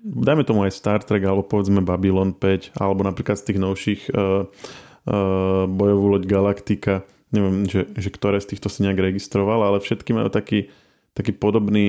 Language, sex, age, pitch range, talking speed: Slovak, male, 20-39, 95-105 Hz, 170 wpm